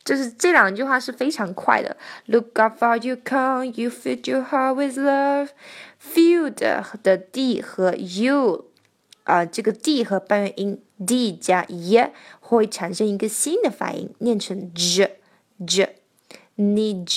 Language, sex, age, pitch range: Chinese, female, 20-39, 190-260 Hz